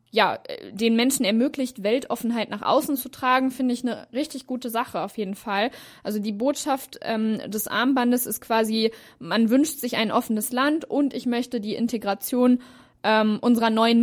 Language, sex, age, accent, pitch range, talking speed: German, female, 20-39, German, 220-255 Hz, 170 wpm